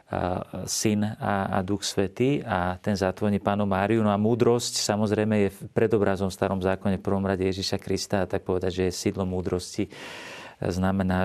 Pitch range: 95-105 Hz